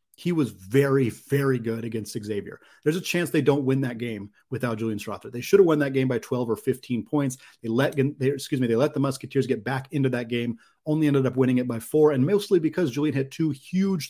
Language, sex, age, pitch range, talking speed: English, male, 30-49, 130-165 Hz, 245 wpm